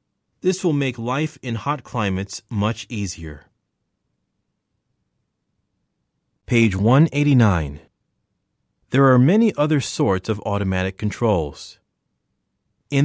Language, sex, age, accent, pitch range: Korean, male, 30-49, American, 105-135 Hz